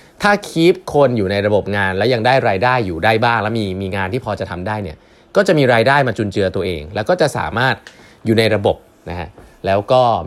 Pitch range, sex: 95-135 Hz, male